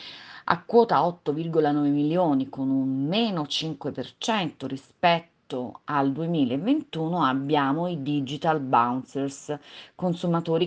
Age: 40-59